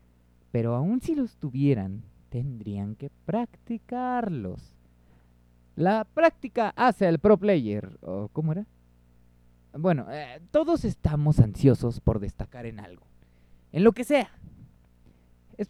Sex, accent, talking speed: male, Mexican, 115 wpm